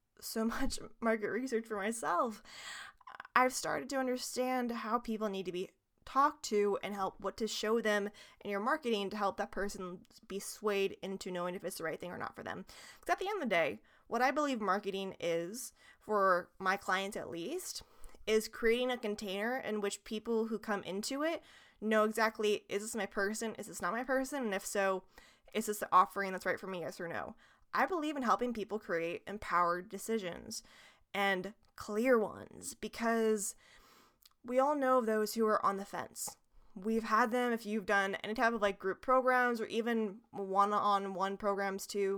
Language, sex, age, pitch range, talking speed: English, female, 20-39, 200-245 Hz, 190 wpm